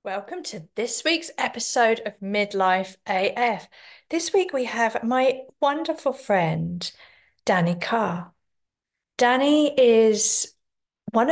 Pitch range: 175-235 Hz